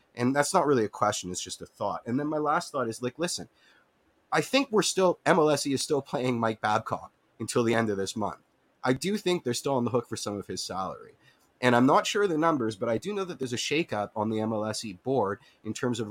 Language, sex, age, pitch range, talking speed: English, male, 30-49, 105-135 Hz, 255 wpm